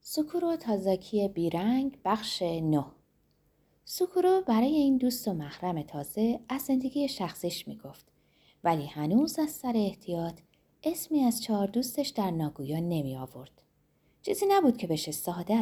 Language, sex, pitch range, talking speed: Persian, female, 160-265 Hz, 125 wpm